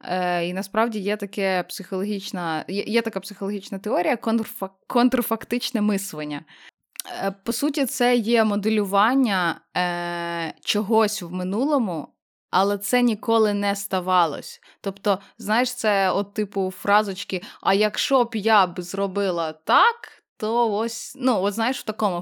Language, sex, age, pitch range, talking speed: Ukrainian, female, 20-39, 185-230 Hz, 135 wpm